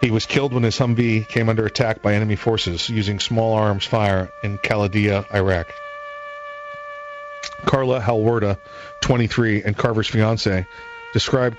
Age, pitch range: 40-59, 100-120 Hz